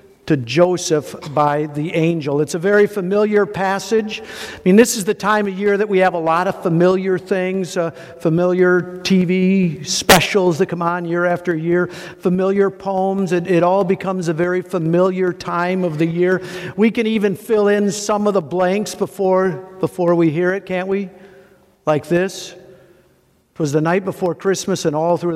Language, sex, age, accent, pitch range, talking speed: English, male, 50-69, American, 165-190 Hz, 180 wpm